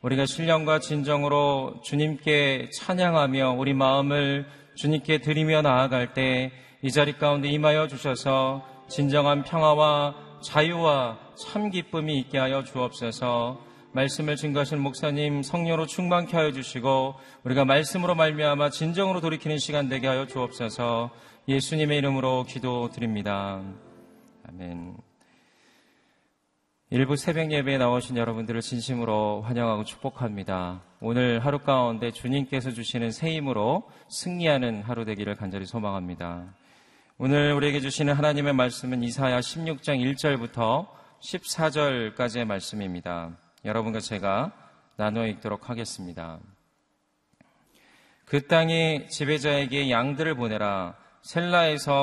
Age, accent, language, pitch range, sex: 40-59, native, Korean, 115-145 Hz, male